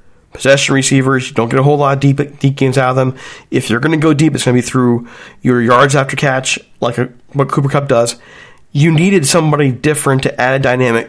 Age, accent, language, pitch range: 40-59, American, English, 125-150 Hz